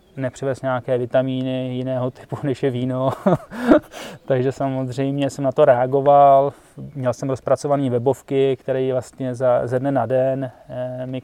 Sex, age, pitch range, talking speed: male, 20-39, 125-135 Hz, 140 wpm